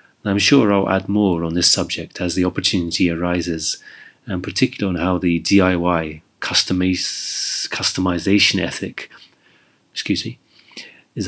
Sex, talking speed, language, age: male, 130 wpm, English, 30-49